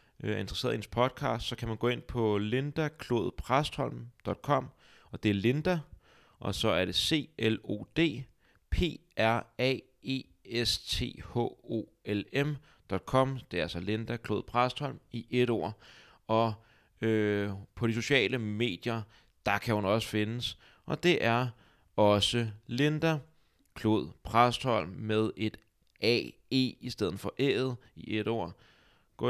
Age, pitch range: 30-49, 105-130 Hz